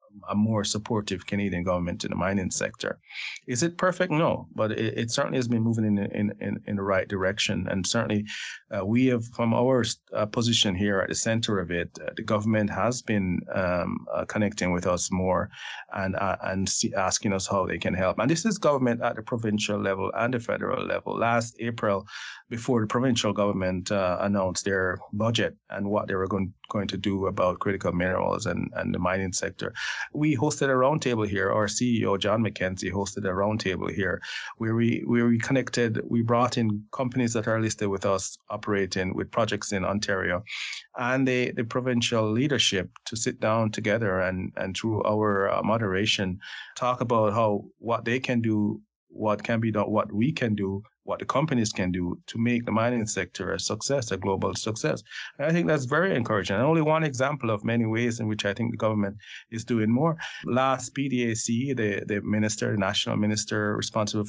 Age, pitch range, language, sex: 30-49, 100-120 Hz, English, male